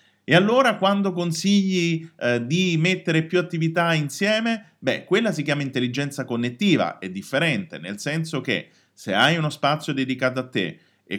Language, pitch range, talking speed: Italian, 115-175 Hz, 155 wpm